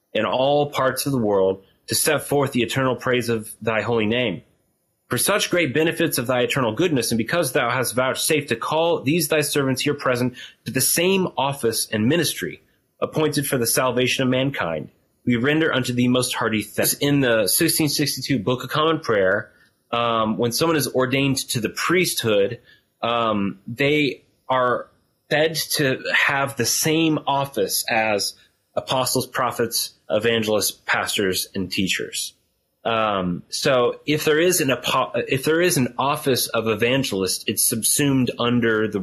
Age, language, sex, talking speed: 30-49, English, male, 160 wpm